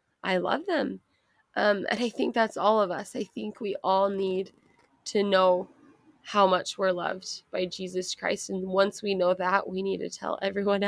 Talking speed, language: 195 wpm, English